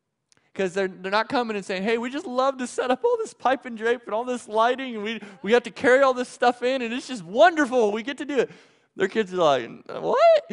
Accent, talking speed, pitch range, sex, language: American, 270 wpm, 155-230 Hz, male, English